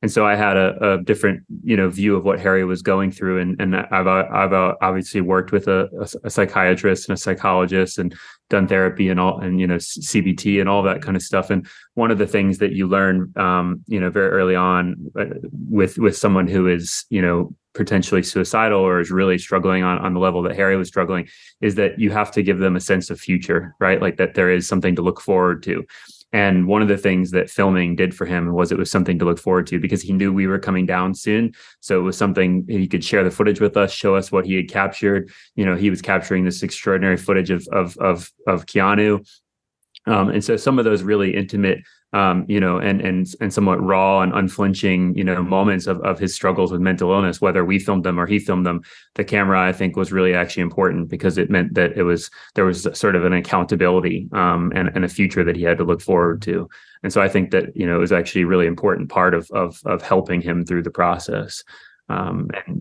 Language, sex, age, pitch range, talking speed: English, male, 20-39, 90-95 Hz, 235 wpm